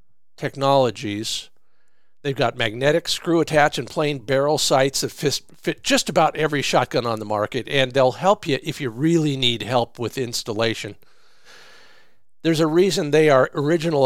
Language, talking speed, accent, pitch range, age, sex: English, 160 wpm, American, 130-170 Hz, 50-69, male